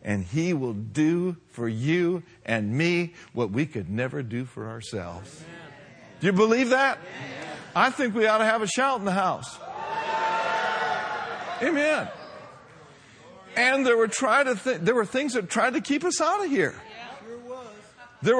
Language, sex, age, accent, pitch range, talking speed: English, male, 50-69, American, 165-250 Hz, 145 wpm